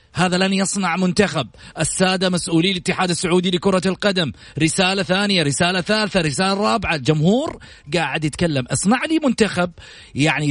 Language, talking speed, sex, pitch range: Arabic, 130 wpm, male, 175-260 Hz